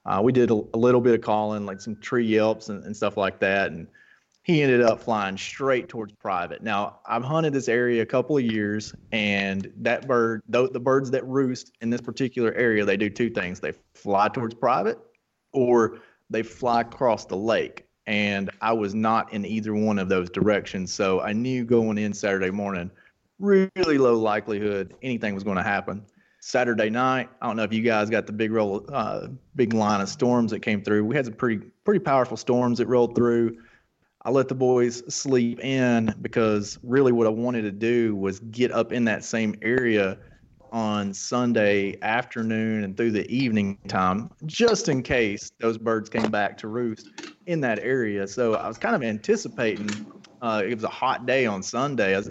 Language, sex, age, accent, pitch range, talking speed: English, male, 30-49, American, 105-125 Hz, 195 wpm